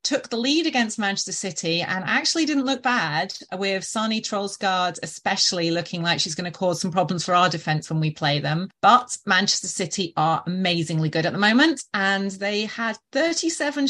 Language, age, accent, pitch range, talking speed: English, 30-49, British, 175-230 Hz, 185 wpm